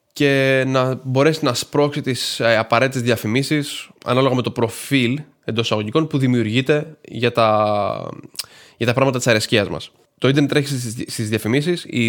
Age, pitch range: 20-39, 115-140 Hz